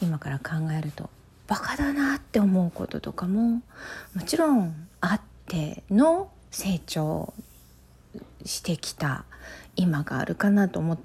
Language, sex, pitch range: Japanese, female, 170-215 Hz